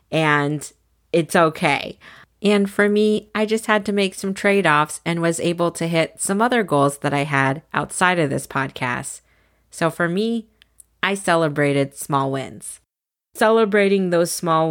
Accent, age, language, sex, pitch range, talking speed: American, 30-49, English, female, 150-185 Hz, 155 wpm